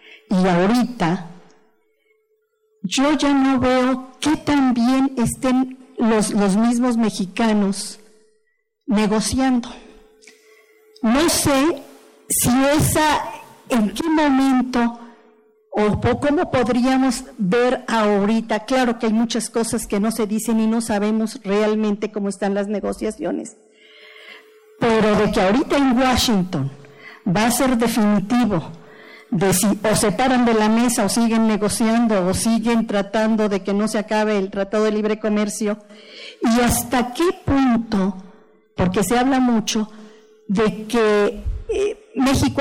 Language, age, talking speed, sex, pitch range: Spanish, 50-69, 125 wpm, female, 210-260 Hz